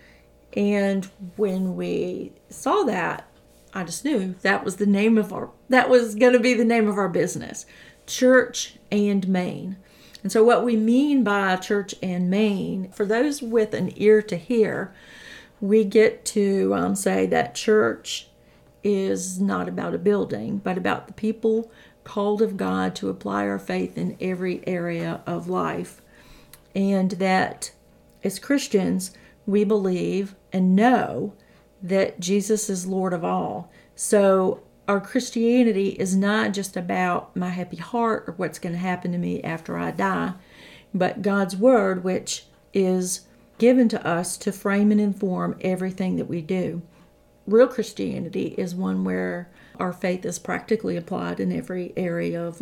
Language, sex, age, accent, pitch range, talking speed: English, female, 40-59, American, 175-215 Hz, 155 wpm